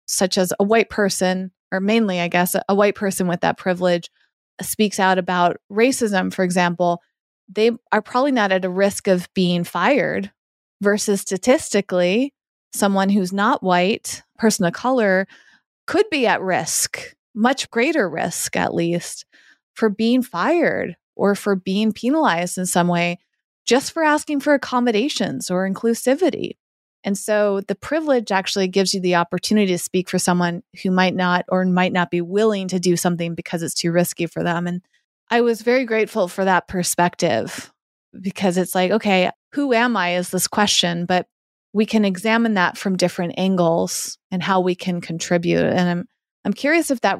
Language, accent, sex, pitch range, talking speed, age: English, American, female, 180-220 Hz, 170 wpm, 30-49